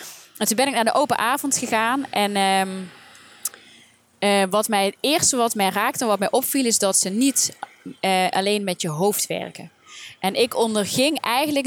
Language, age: Dutch, 20-39